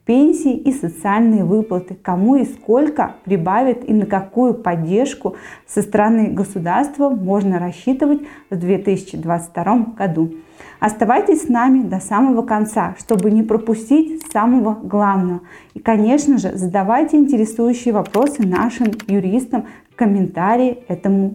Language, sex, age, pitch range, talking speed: Russian, female, 20-39, 190-250 Hz, 120 wpm